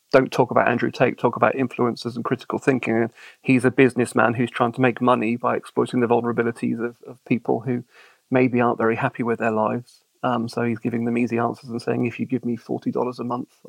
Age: 40-59